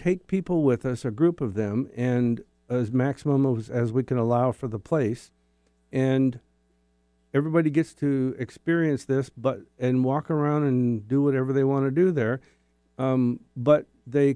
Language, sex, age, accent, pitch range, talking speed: English, male, 50-69, American, 100-135 Hz, 165 wpm